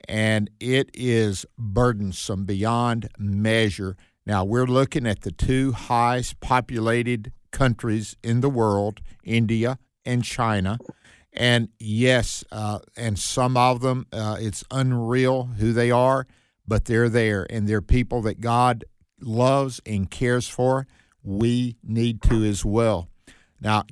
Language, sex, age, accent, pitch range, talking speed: English, male, 50-69, American, 105-125 Hz, 130 wpm